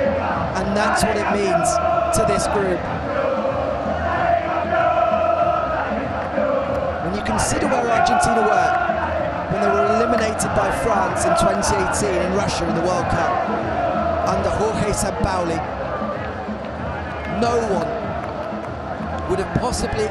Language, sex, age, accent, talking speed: English, male, 30-49, British, 110 wpm